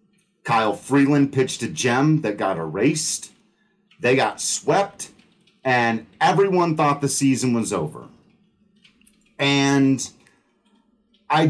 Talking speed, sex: 105 wpm, male